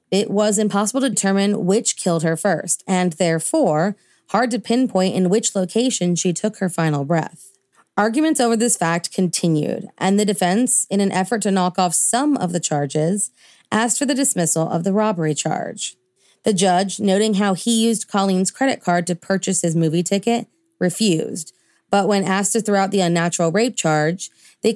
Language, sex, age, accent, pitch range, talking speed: English, female, 30-49, American, 175-215 Hz, 180 wpm